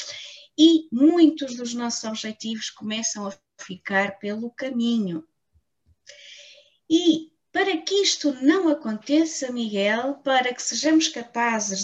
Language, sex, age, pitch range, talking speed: Portuguese, female, 20-39, 210-260 Hz, 105 wpm